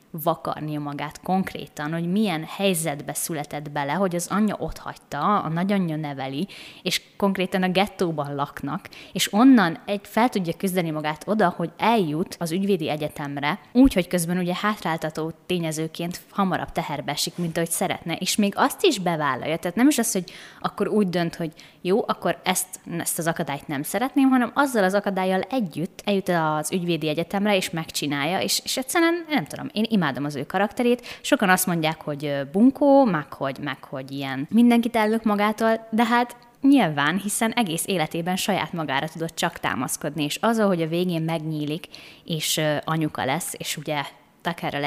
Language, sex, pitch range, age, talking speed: Hungarian, female, 155-205 Hz, 20-39, 165 wpm